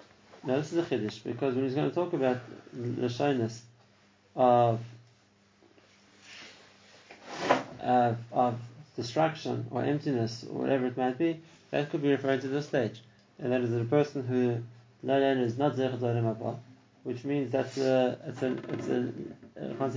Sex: male